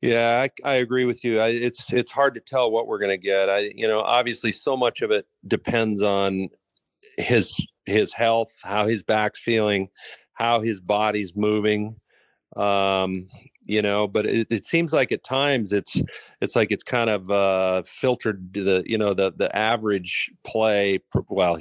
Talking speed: 175 wpm